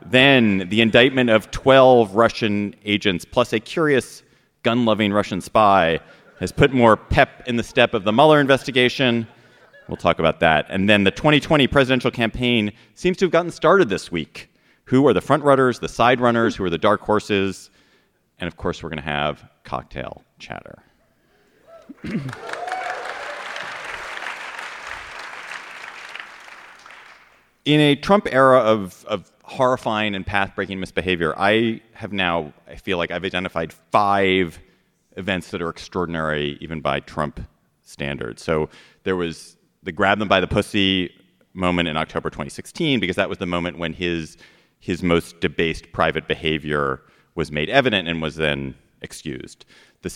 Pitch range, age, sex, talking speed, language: 85-115 Hz, 40-59, male, 145 wpm, English